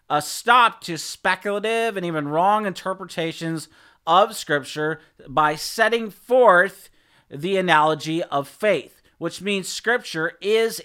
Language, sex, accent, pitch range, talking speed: English, male, American, 135-185 Hz, 120 wpm